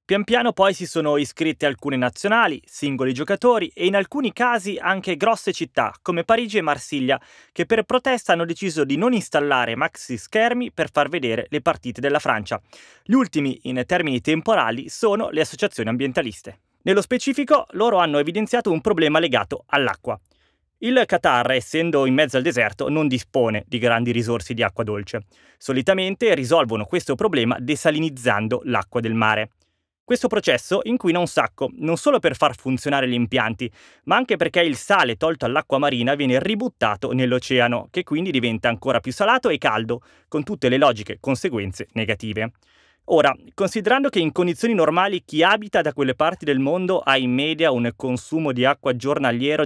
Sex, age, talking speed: male, 20-39, 165 wpm